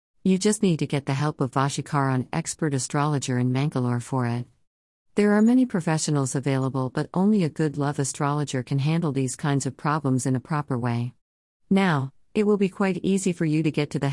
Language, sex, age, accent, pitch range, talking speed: English, female, 50-69, American, 130-155 Hz, 205 wpm